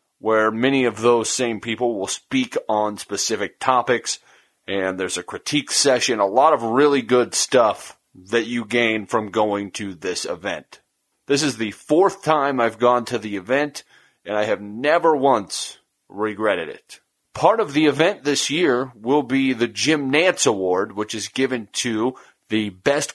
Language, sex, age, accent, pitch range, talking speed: English, male, 30-49, American, 110-140 Hz, 170 wpm